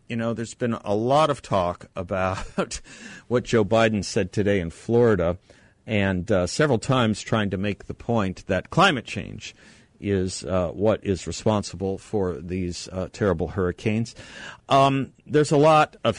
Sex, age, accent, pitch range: male, 50-69, American, 100-130 Hz